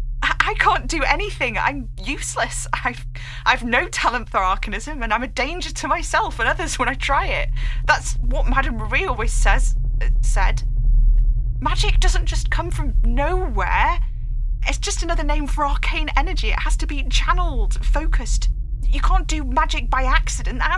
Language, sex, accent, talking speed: English, female, British, 170 wpm